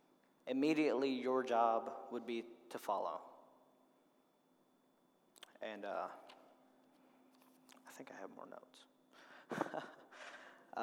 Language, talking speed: English, 85 wpm